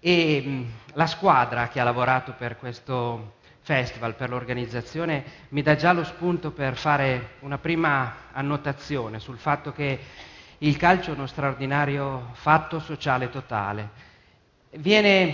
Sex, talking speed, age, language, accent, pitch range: male, 130 wpm, 40-59, Italian, native, 125-165 Hz